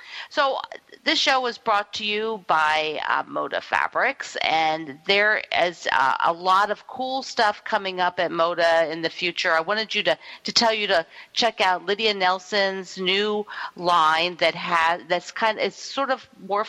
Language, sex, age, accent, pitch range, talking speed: English, female, 50-69, American, 175-260 Hz, 180 wpm